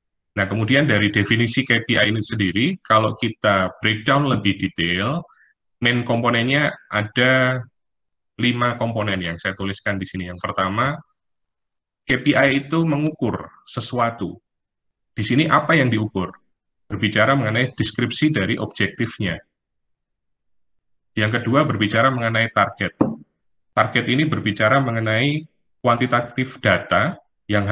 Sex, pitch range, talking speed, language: male, 100-125 Hz, 110 wpm, Indonesian